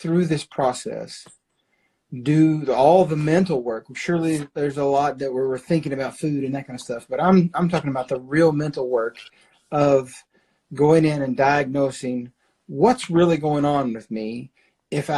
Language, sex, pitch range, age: English, male, 135-160 Hz, 40-59